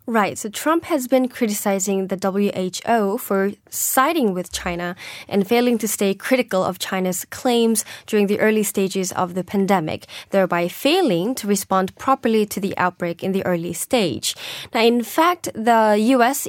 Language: Korean